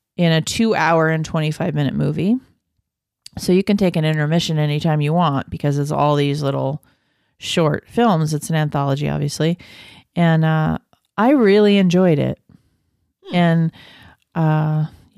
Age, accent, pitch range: 40-59, American, 150-180 Hz